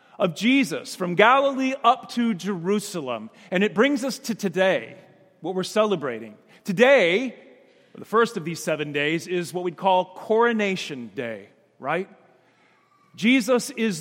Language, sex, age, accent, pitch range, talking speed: English, male, 40-59, American, 180-235 Hz, 135 wpm